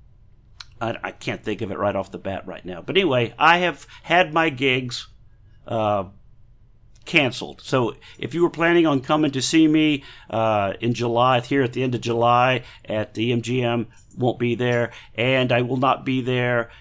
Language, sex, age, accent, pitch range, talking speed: English, male, 50-69, American, 115-150 Hz, 180 wpm